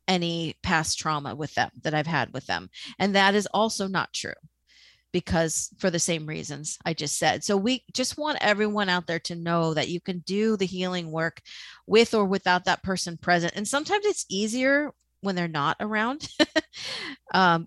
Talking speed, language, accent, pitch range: 185 wpm, English, American, 170-200 Hz